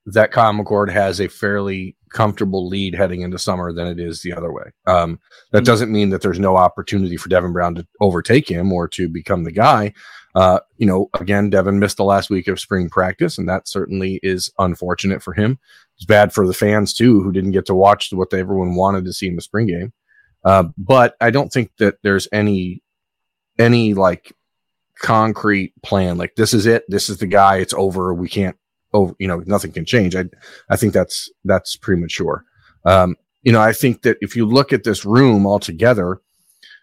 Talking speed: 200 wpm